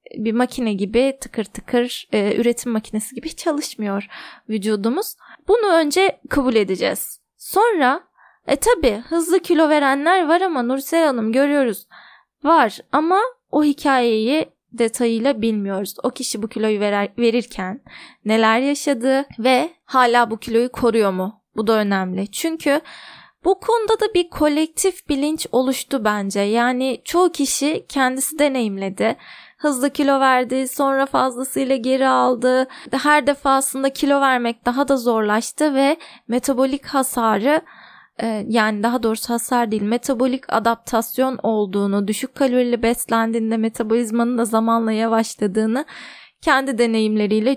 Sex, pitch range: female, 225-280 Hz